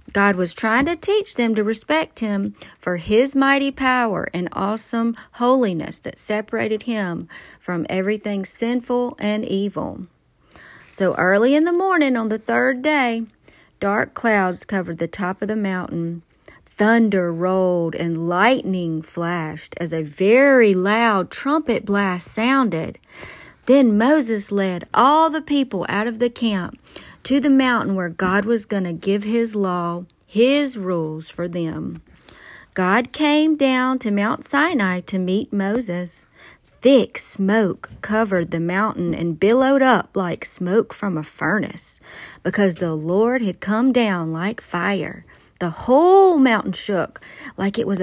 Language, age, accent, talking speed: English, 40-59, American, 145 wpm